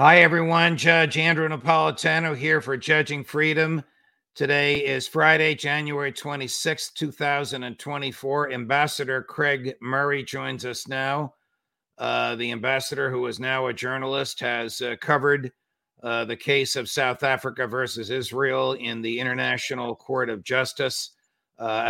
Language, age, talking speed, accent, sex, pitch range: English, 50-69, 130 wpm, American, male, 120-140 Hz